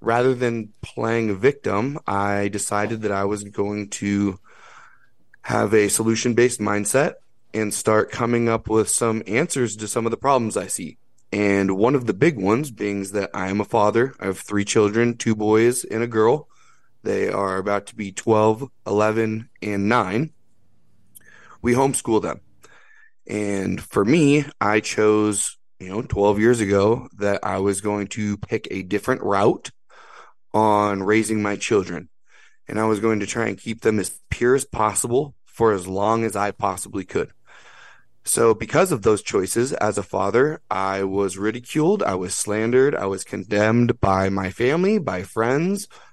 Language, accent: English, American